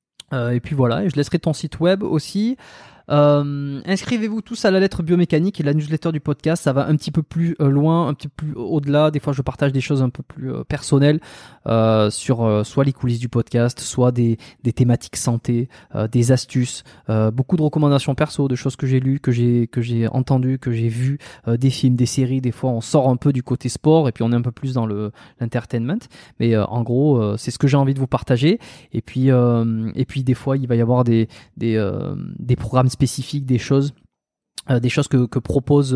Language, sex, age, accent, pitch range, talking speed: French, male, 20-39, French, 125-155 Hz, 235 wpm